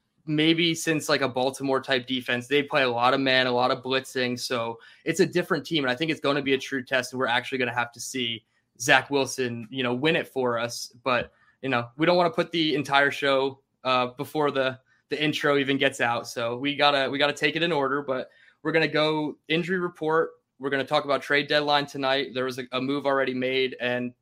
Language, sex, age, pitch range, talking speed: English, male, 20-39, 125-145 Hz, 245 wpm